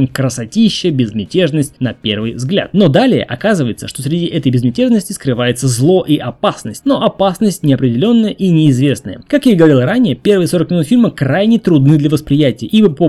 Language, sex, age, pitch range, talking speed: Russian, male, 20-39, 135-200 Hz, 160 wpm